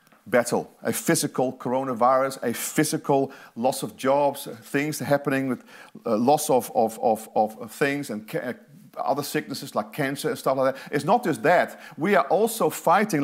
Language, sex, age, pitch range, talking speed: English, male, 40-59, 175-230 Hz, 155 wpm